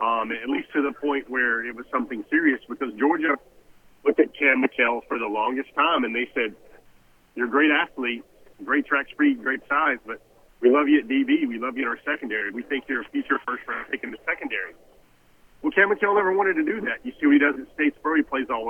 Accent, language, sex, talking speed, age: American, English, male, 235 wpm, 40-59